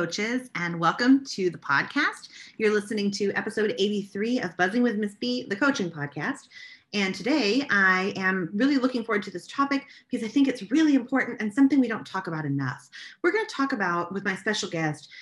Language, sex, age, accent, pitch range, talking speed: English, female, 30-49, American, 175-230 Hz, 200 wpm